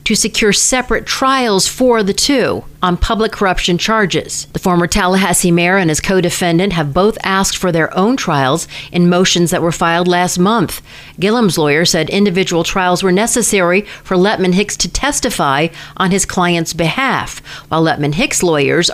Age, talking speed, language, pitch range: 40-59, 170 wpm, English, 160-205 Hz